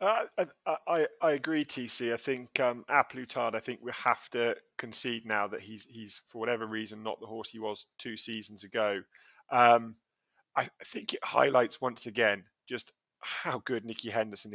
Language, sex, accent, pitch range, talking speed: English, male, British, 110-130 Hz, 180 wpm